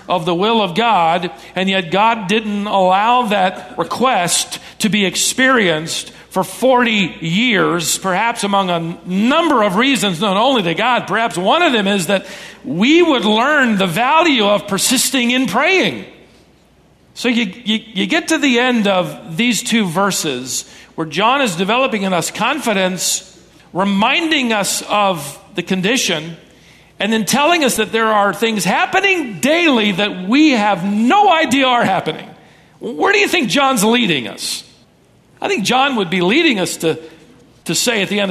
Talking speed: 165 wpm